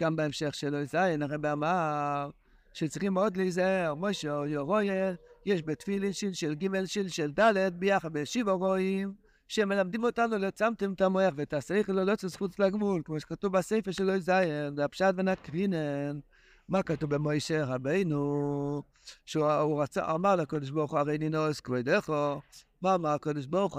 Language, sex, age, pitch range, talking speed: Hebrew, male, 60-79, 155-200 Hz, 155 wpm